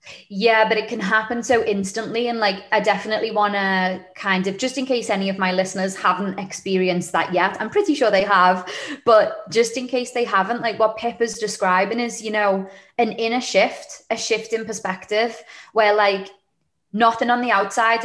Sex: female